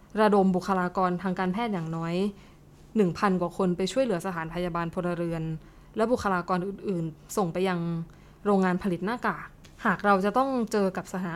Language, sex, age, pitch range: Thai, female, 20-39, 180-220 Hz